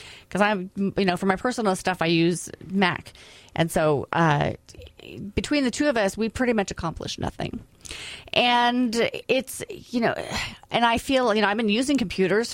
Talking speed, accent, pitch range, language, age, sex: 175 wpm, American, 195-245 Hz, English, 30-49, female